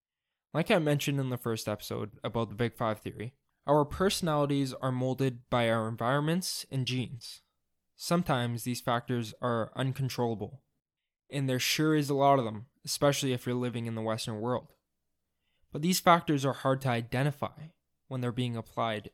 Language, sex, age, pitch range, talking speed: English, male, 20-39, 110-140 Hz, 165 wpm